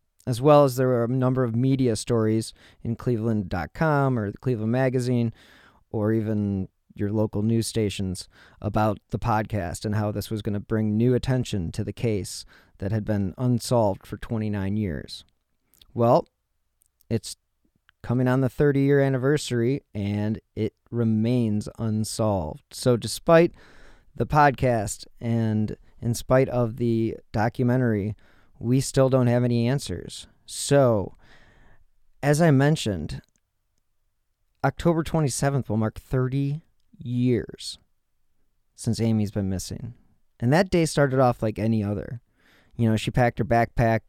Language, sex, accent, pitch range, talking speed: English, male, American, 105-125 Hz, 135 wpm